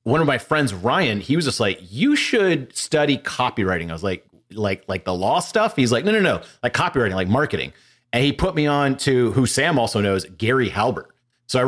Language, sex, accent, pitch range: English, male, American, 105-140 Hz